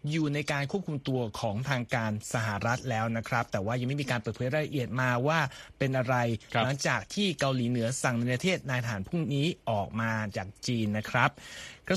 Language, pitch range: Thai, 115-150 Hz